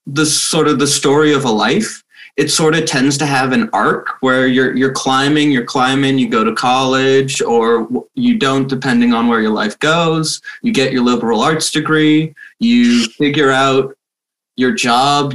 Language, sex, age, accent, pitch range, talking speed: English, male, 20-39, American, 120-160 Hz, 180 wpm